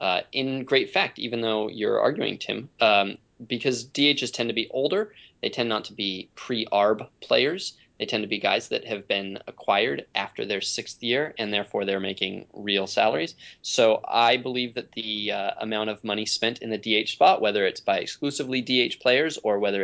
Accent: American